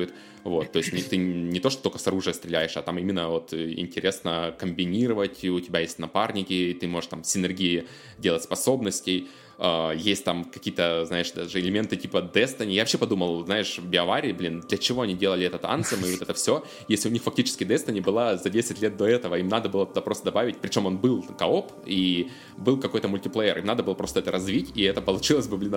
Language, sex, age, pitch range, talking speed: Russian, male, 20-39, 90-100 Hz, 205 wpm